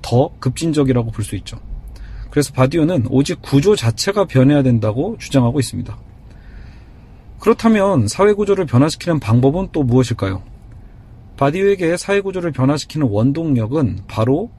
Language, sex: Korean, male